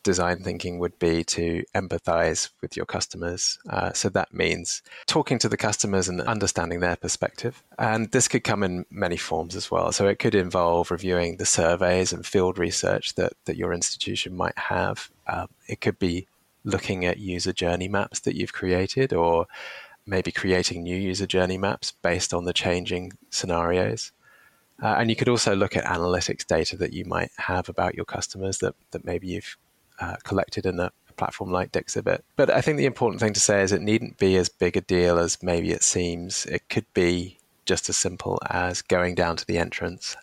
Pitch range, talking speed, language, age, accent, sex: 90-100 Hz, 190 wpm, English, 20-39, British, male